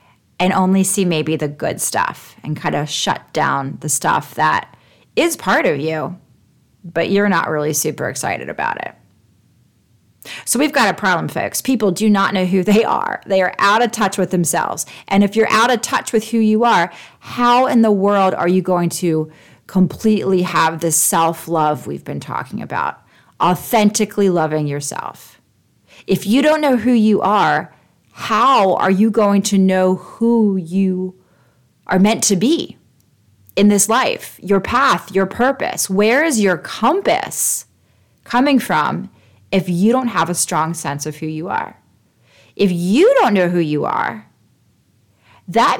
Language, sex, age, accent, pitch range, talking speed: English, female, 30-49, American, 155-215 Hz, 165 wpm